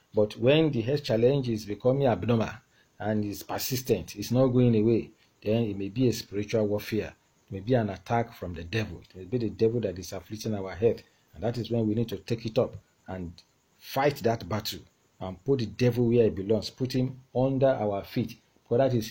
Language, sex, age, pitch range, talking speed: English, male, 40-59, 105-135 Hz, 215 wpm